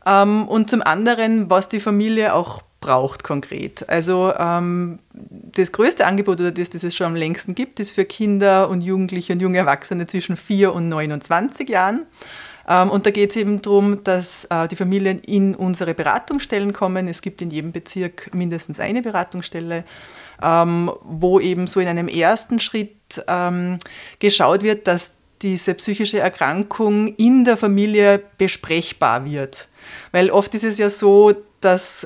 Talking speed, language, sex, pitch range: 150 wpm, German, female, 180-210 Hz